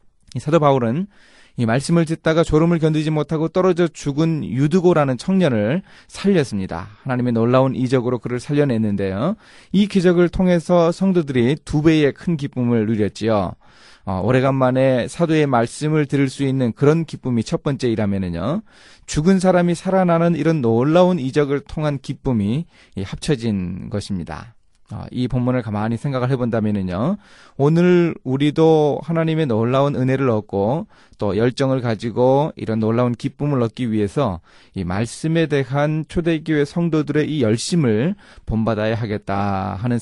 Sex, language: male, Korean